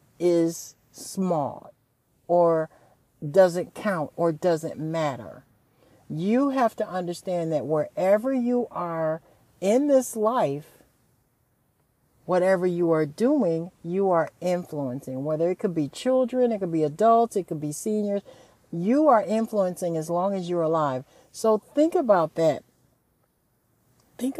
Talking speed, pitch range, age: 130 wpm, 160-225 Hz, 60-79